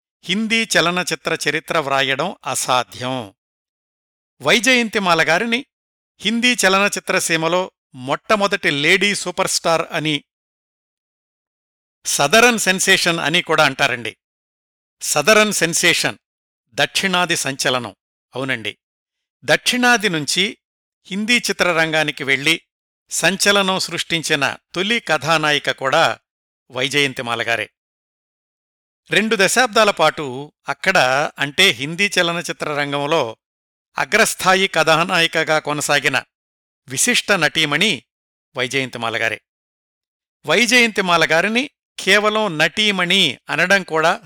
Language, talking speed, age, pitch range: Telugu, 75 wpm, 50-69, 135-190 Hz